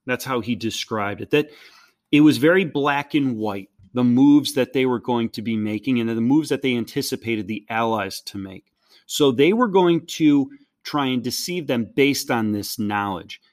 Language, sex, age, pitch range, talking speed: English, male, 30-49, 115-150 Hz, 195 wpm